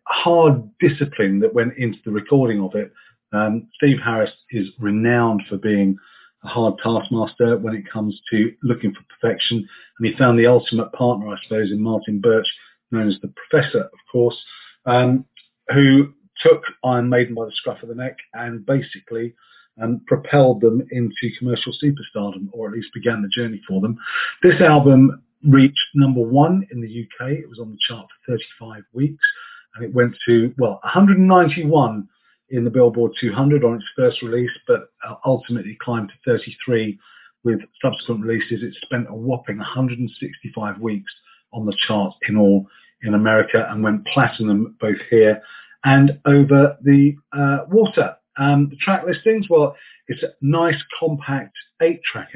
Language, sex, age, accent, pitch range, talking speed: English, male, 40-59, British, 110-140 Hz, 160 wpm